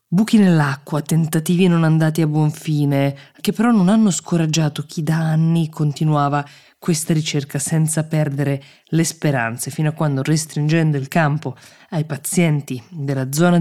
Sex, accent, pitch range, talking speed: female, native, 140-170 Hz, 145 wpm